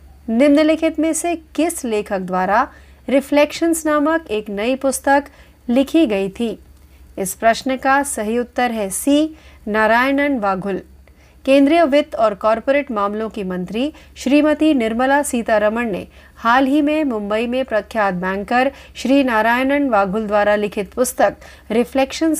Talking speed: 70 wpm